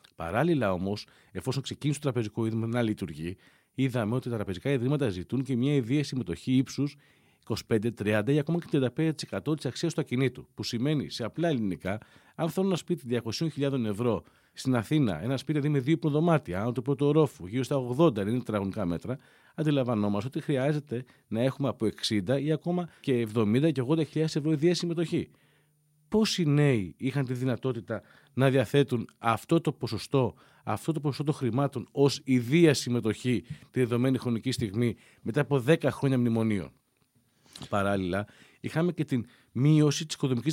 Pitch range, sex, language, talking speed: 115-150 Hz, male, Greek, 155 wpm